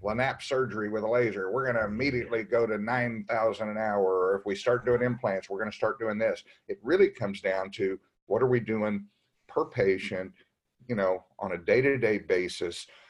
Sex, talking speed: male, 200 wpm